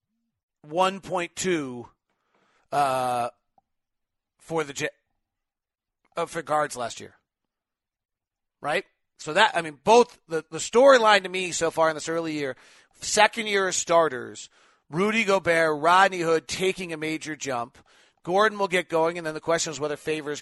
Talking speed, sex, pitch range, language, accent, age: 145 wpm, male, 150-200 Hz, English, American, 40-59